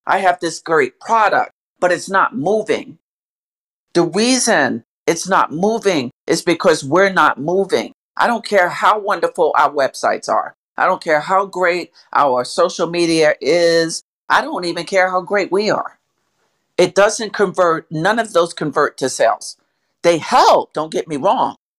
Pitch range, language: 165-215 Hz, English